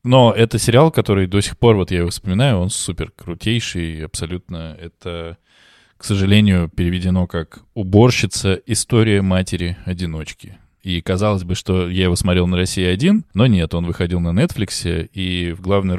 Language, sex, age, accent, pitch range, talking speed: Russian, male, 20-39, native, 85-105 Hz, 160 wpm